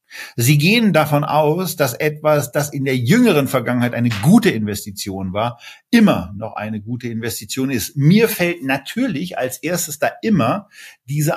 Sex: male